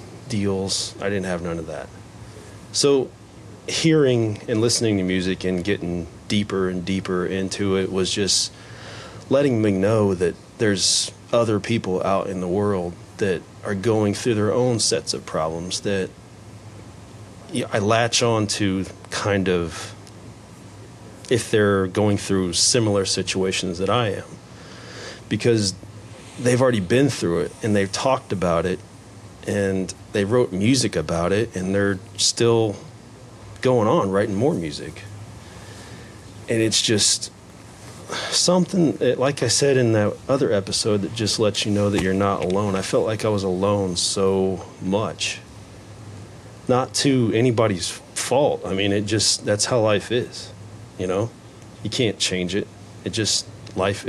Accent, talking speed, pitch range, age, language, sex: American, 145 wpm, 95-115 Hz, 30-49, English, male